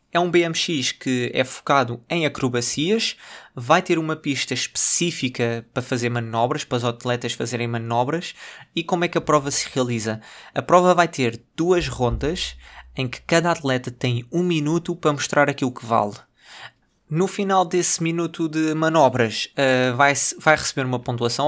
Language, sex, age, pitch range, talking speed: Portuguese, male, 20-39, 120-155 Hz, 160 wpm